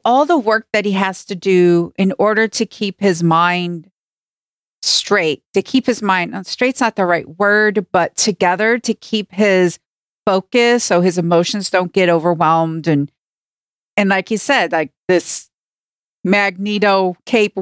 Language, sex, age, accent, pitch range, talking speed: English, female, 50-69, American, 180-225 Hz, 155 wpm